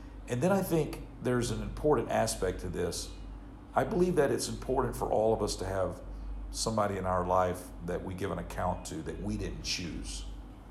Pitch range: 90-115 Hz